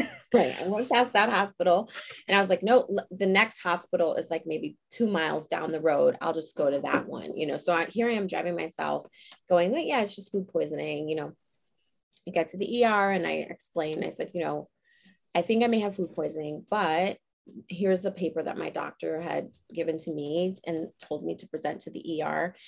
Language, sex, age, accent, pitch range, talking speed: English, female, 30-49, American, 165-215 Hz, 220 wpm